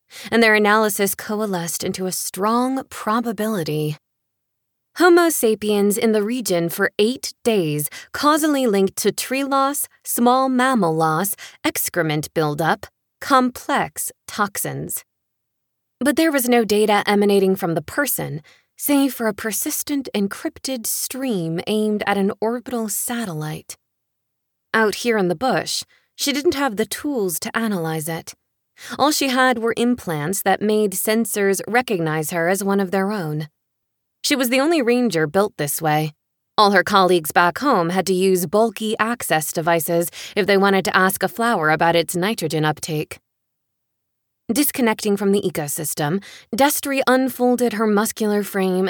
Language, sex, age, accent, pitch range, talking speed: English, female, 20-39, American, 170-240 Hz, 140 wpm